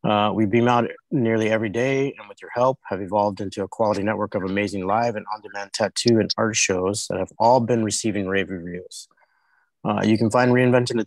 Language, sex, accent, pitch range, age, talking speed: English, male, American, 100-120 Hz, 30-49, 210 wpm